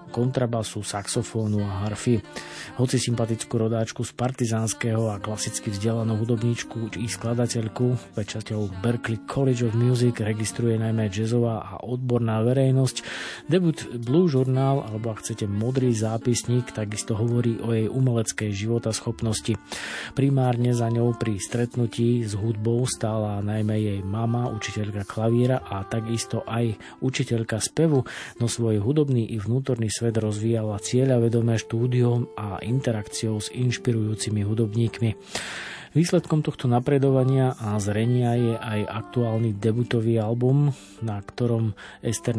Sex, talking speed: male, 120 wpm